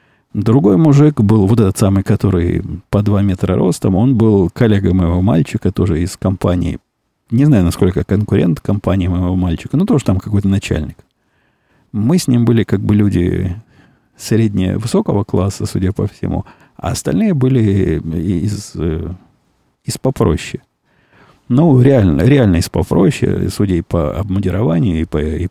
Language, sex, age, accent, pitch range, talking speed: Russian, male, 50-69, native, 90-115 Hz, 145 wpm